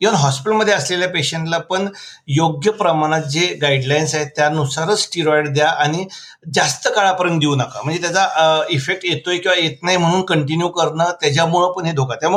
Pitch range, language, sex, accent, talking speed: 145-180 Hz, Marathi, male, native, 115 wpm